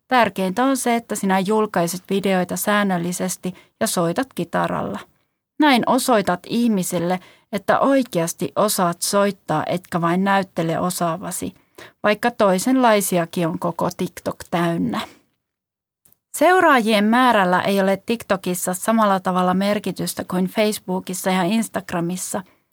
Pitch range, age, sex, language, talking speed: 180-220 Hz, 30-49, female, Finnish, 105 wpm